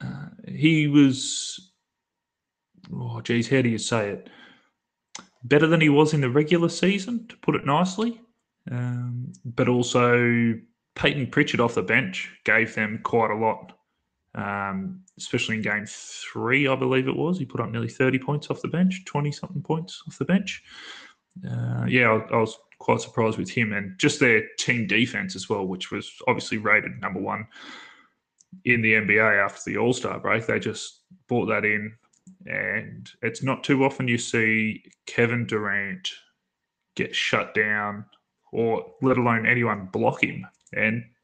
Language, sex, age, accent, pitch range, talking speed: English, male, 20-39, Australian, 110-140 Hz, 160 wpm